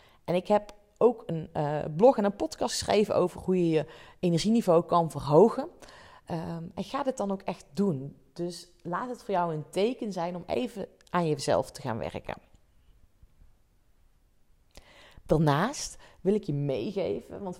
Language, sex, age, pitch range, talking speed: Dutch, female, 40-59, 155-205 Hz, 155 wpm